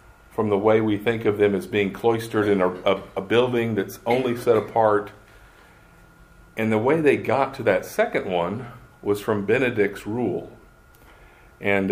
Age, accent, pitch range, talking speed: 50-69, American, 100-135 Hz, 165 wpm